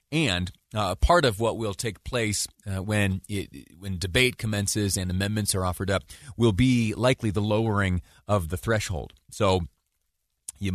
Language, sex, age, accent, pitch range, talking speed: English, male, 30-49, American, 90-110 Hz, 165 wpm